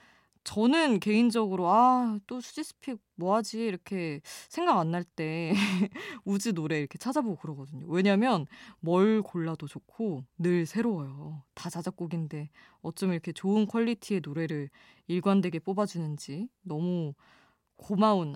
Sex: female